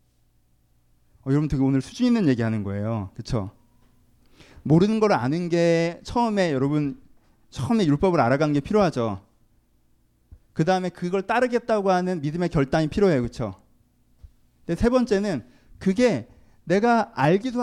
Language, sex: Korean, male